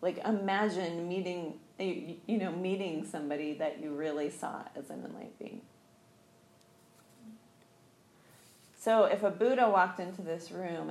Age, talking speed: 30-49, 130 wpm